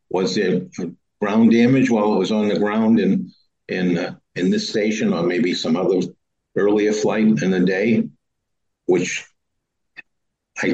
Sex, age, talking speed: male, 50-69, 150 wpm